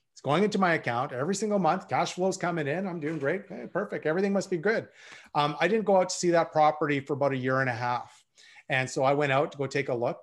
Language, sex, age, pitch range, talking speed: English, male, 30-49, 130-165 Hz, 270 wpm